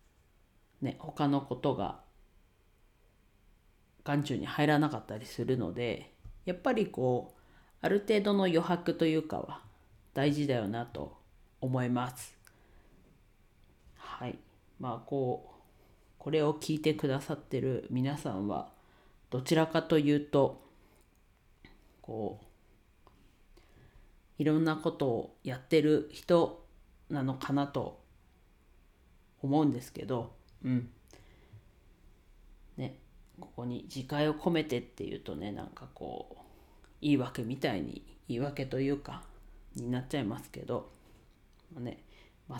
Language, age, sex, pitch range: Japanese, 40-59, female, 120-155 Hz